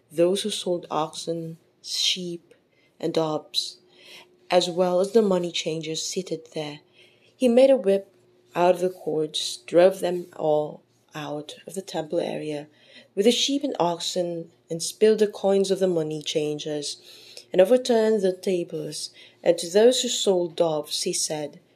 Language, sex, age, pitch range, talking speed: English, female, 20-39, 155-200 Hz, 155 wpm